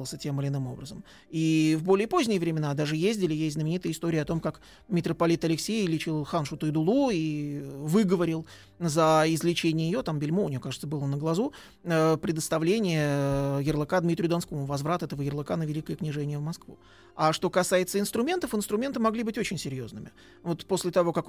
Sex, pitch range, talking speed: male, 155-200 Hz, 170 wpm